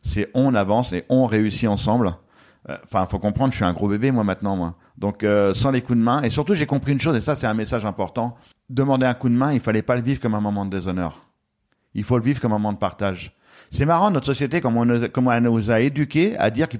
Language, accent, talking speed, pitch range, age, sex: French, French, 275 wpm, 110-175 Hz, 50-69, male